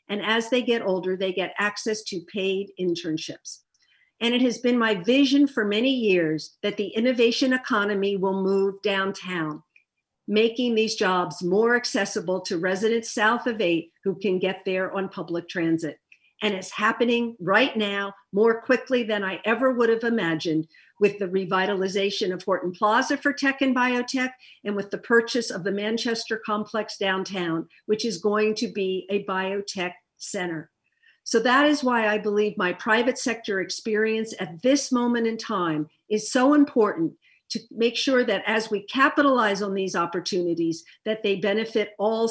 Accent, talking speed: American, 165 wpm